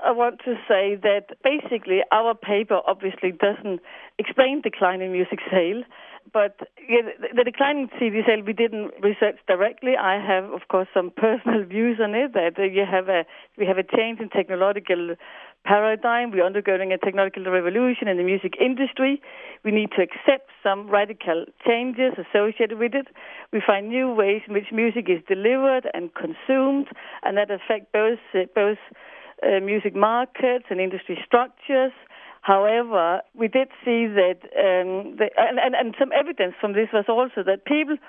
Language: English